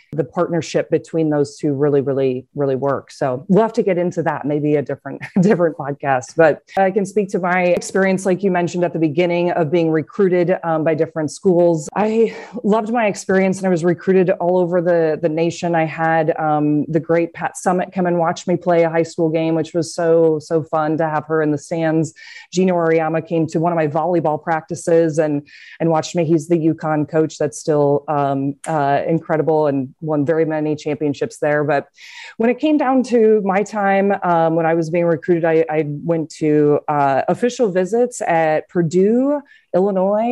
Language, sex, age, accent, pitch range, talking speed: English, female, 20-39, American, 155-180 Hz, 200 wpm